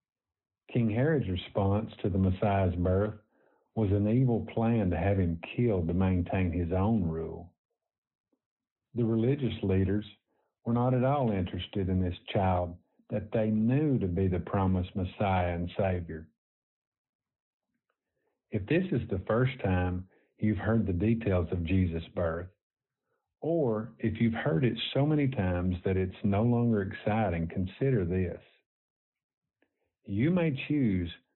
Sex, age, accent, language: male, 50-69, American, English